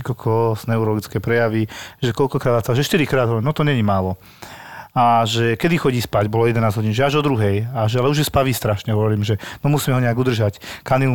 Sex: male